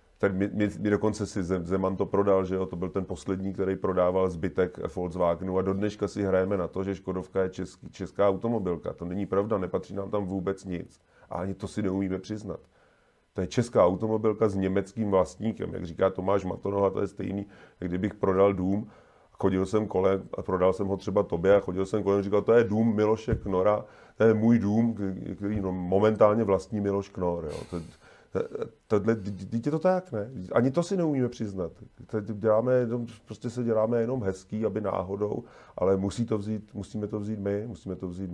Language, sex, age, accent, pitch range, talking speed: Czech, male, 30-49, native, 90-105 Hz, 200 wpm